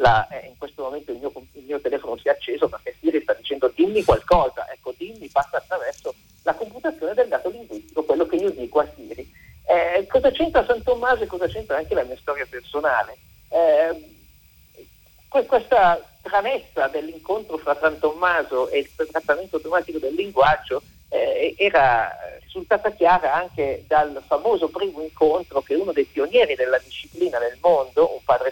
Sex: male